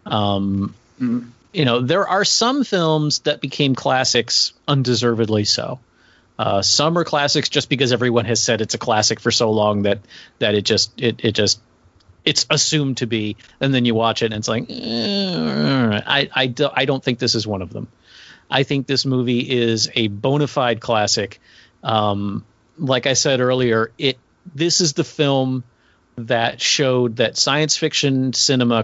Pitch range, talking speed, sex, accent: 110-145 Hz, 170 wpm, male, American